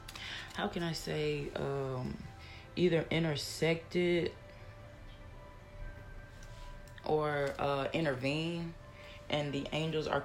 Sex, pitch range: female, 115-160 Hz